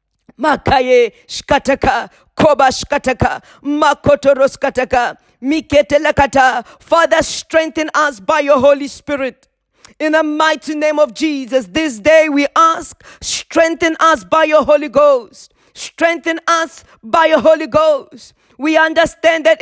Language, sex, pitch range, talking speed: English, female, 280-320 Hz, 100 wpm